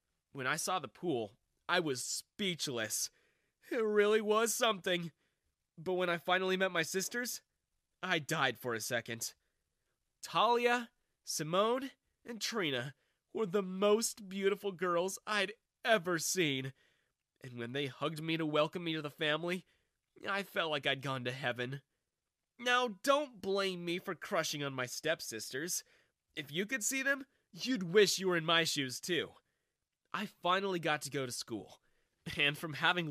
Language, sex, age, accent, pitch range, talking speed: English, male, 20-39, American, 145-210 Hz, 155 wpm